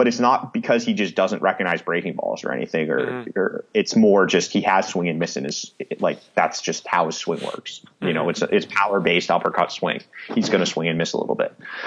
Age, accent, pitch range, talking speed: 30-49, American, 85-110 Hz, 250 wpm